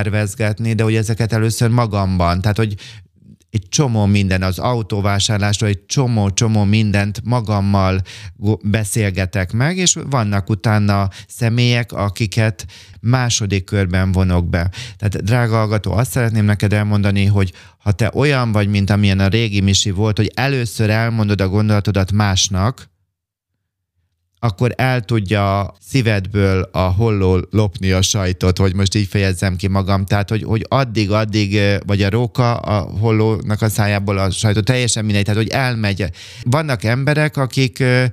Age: 30-49